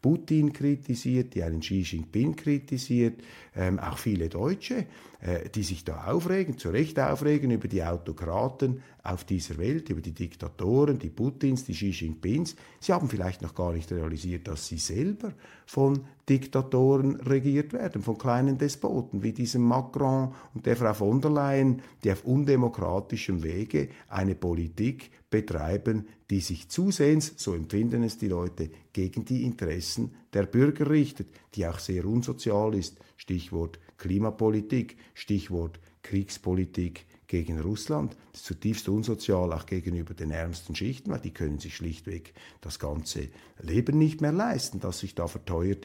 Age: 50-69